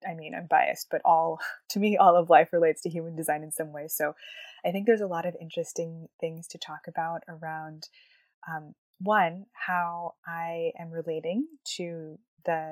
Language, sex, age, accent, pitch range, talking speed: English, female, 20-39, American, 160-195 Hz, 185 wpm